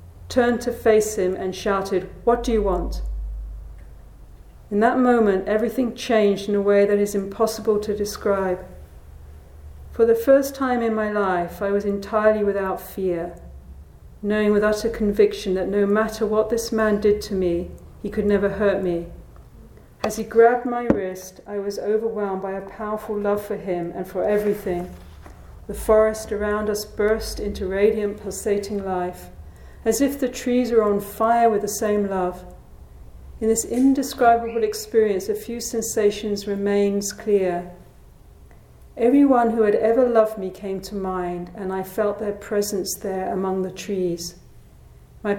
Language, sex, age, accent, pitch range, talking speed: English, female, 50-69, British, 185-215 Hz, 155 wpm